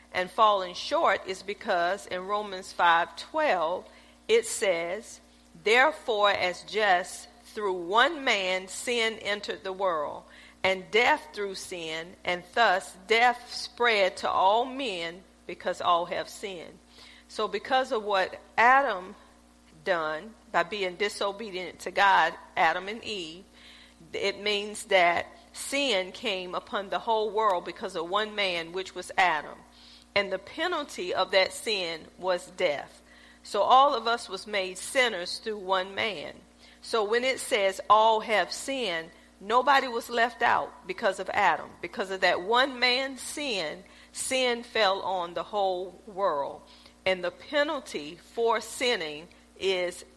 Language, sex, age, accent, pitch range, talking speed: English, female, 50-69, American, 175-225 Hz, 140 wpm